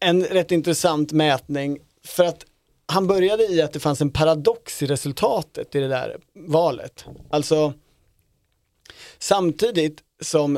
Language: Swedish